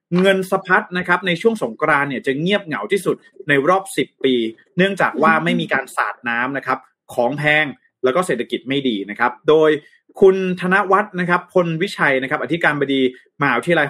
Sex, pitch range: male, 135-195 Hz